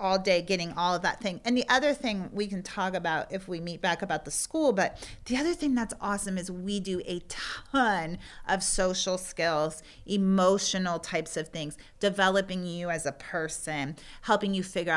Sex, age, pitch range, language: female, 40-59, 160-195 Hz, English